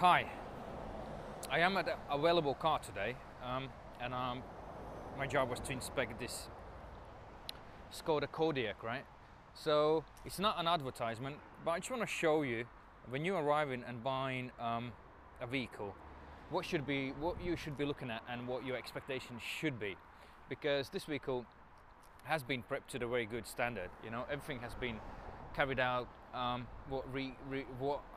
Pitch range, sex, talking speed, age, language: 125-155 Hz, male, 165 wpm, 20-39, English